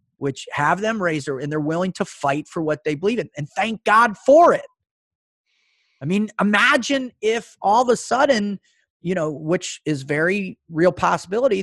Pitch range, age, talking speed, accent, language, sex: 150-220 Hz, 30-49, 180 wpm, American, English, male